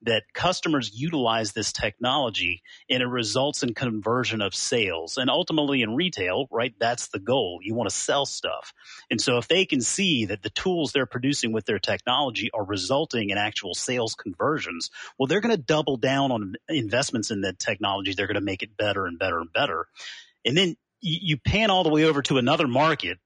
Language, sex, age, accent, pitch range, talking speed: English, male, 30-49, American, 110-150 Hz, 200 wpm